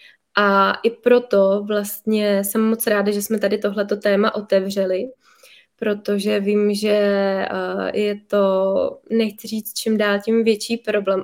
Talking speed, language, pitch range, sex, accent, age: 135 wpm, Czech, 200-220 Hz, female, native, 20-39